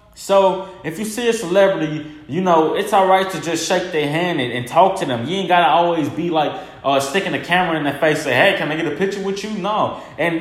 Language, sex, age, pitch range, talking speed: English, male, 20-39, 160-215 Hz, 270 wpm